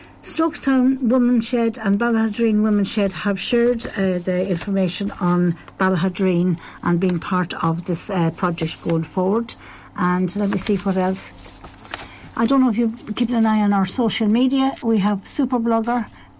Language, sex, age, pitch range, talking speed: English, female, 60-79, 180-225 Hz, 165 wpm